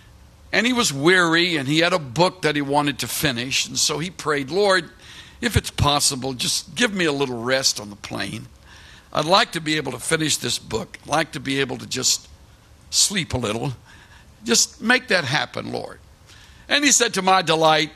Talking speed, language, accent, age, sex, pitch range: 205 wpm, English, American, 60-79, male, 120-170 Hz